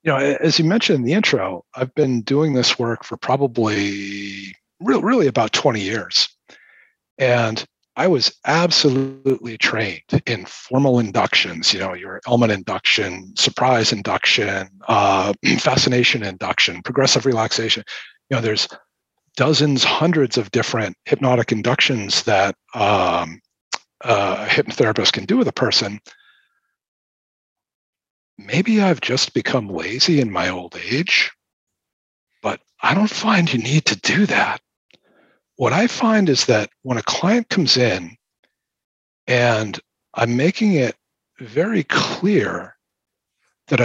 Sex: male